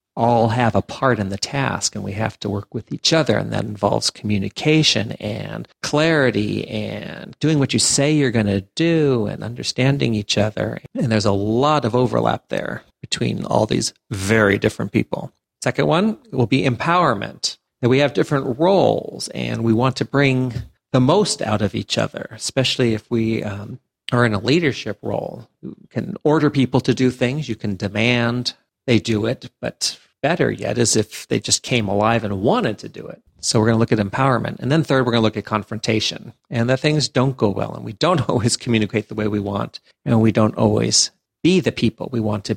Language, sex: English, male